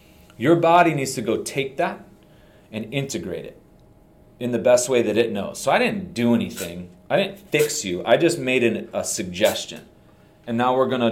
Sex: male